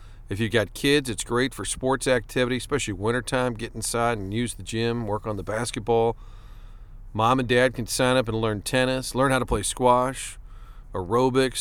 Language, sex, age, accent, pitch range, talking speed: English, male, 40-59, American, 115-140 Hz, 185 wpm